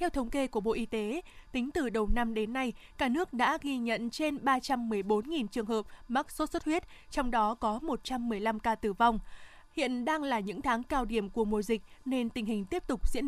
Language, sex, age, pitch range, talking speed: Vietnamese, female, 20-39, 225-285 Hz, 220 wpm